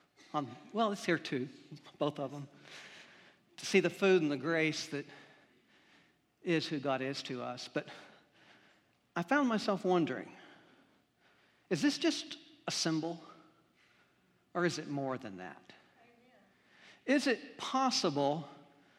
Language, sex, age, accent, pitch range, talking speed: English, male, 50-69, American, 145-205 Hz, 130 wpm